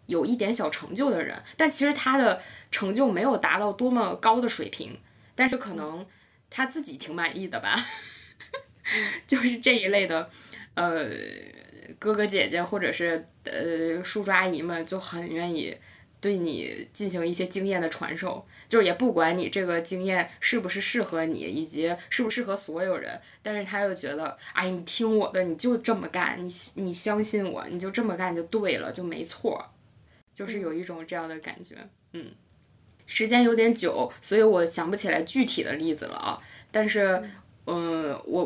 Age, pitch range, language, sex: 20-39, 170-220 Hz, Chinese, female